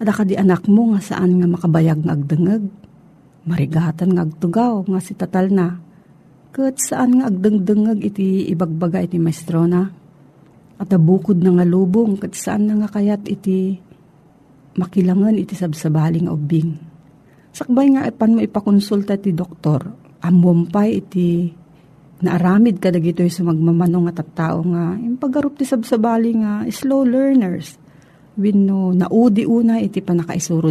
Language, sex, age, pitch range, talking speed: Filipino, female, 40-59, 165-210 Hz, 140 wpm